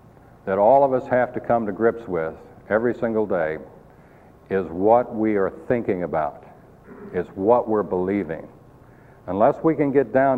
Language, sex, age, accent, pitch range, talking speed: English, male, 60-79, American, 95-130 Hz, 160 wpm